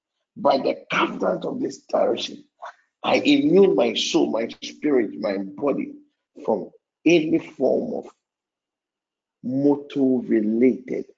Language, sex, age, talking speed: English, male, 50-69, 105 wpm